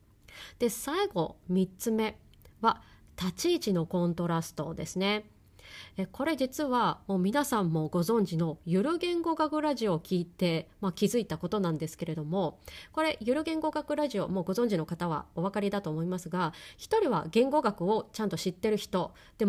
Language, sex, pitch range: Japanese, female, 175-275 Hz